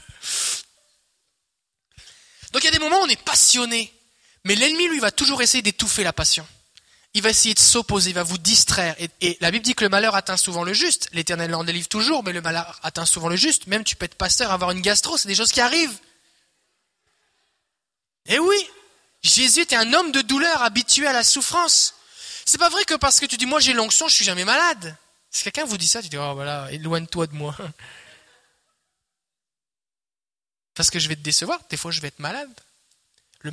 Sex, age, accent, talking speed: male, 20-39, French, 210 wpm